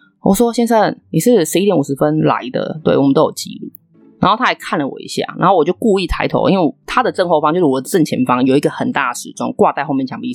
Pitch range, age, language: 150-235 Hz, 20-39, Chinese